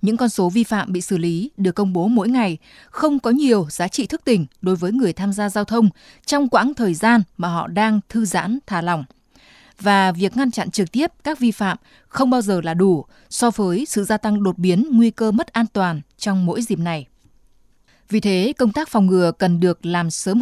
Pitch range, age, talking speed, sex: 185-240 Hz, 20-39, 230 wpm, female